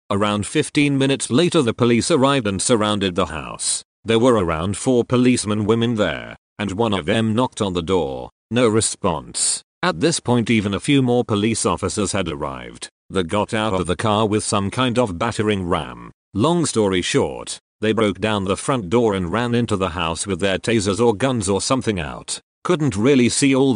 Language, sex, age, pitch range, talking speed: English, male, 40-59, 95-125 Hz, 195 wpm